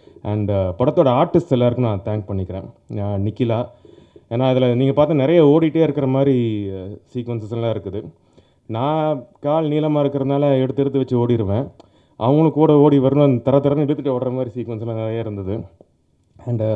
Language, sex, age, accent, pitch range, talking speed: Tamil, male, 30-49, native, 105-135 Hz, 140 wpm